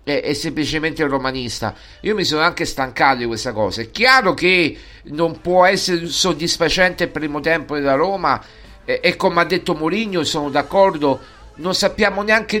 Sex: male